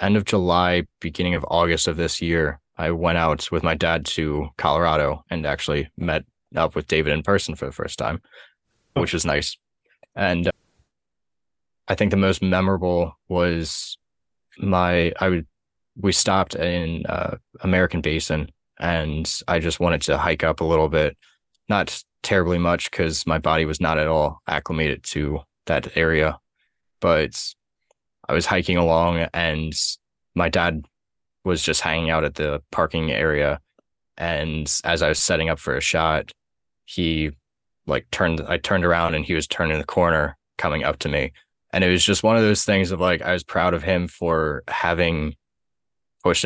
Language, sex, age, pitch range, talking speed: English, male, 20-39, 75-90 Hz, 170 wpm